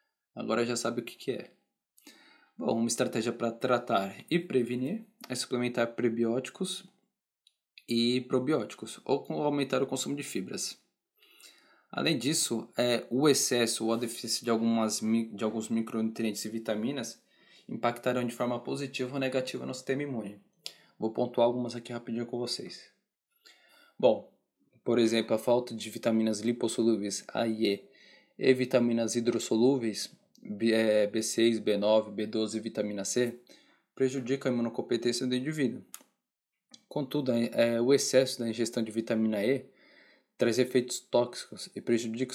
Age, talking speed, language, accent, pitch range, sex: 20-39, 135 wpm, Portuguese, Brazilian, 115-130 Hz, male